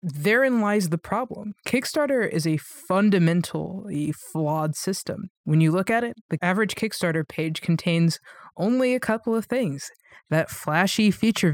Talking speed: 145 wpm